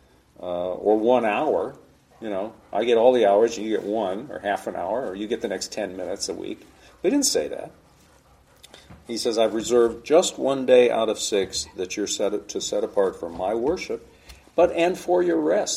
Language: English